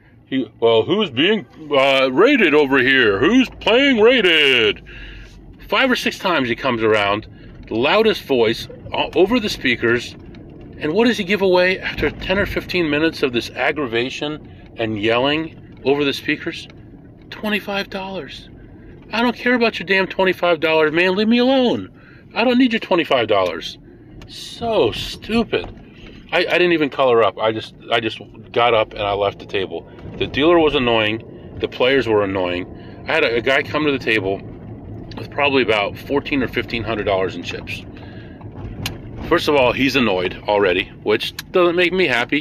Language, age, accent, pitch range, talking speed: English, 40-59, American, 115-175 Hz, 165 wpm